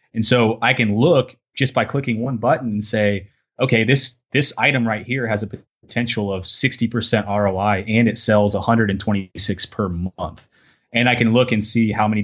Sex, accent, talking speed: male, American, 210 wpm